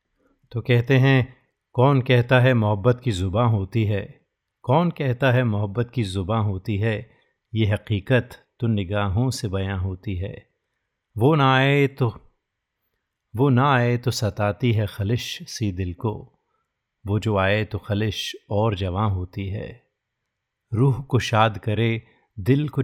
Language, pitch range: Hindi, 100-125 Hz